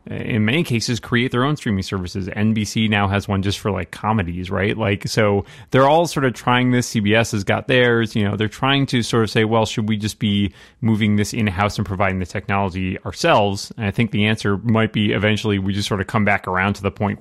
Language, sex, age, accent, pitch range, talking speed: English, male, 30-49, American, 100-120 Hz, 235 wpm